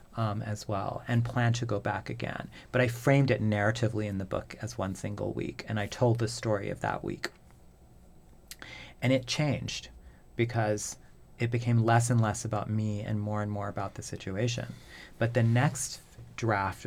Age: 40-59